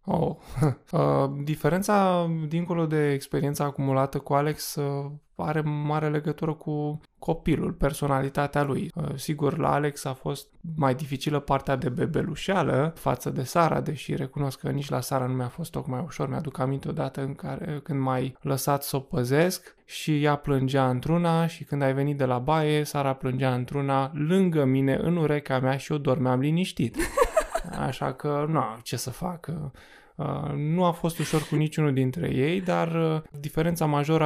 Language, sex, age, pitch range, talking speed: Romanian, male, 20-39, 140-160 Hz, 150 wpm